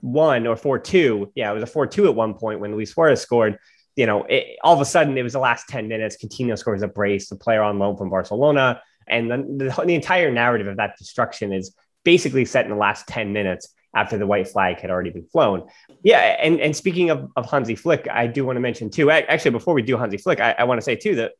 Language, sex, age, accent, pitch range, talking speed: English, male, 20-39, American, 110-150 Hz, 260 wpm